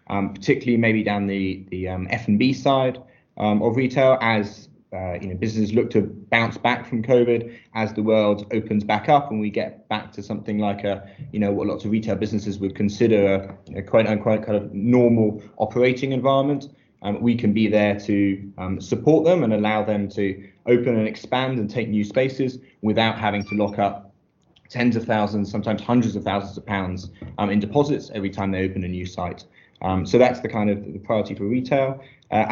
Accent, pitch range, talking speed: British, 100-115 Hz, 205 wpm